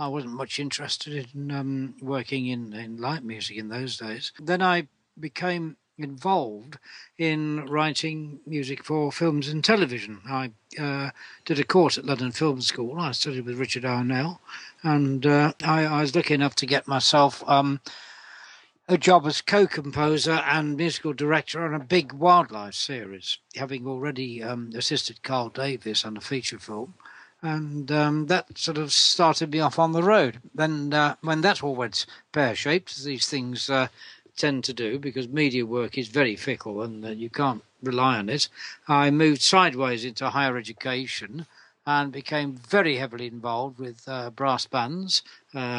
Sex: male